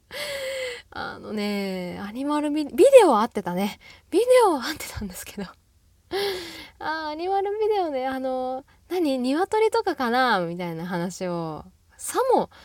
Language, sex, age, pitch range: Japanese, female, 10-29, 175-255 Hz